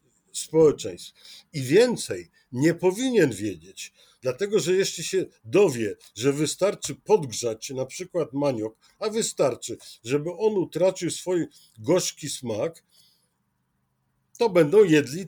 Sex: male